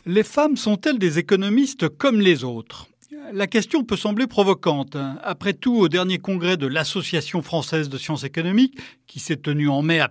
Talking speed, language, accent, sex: 180 wpm, French, French, male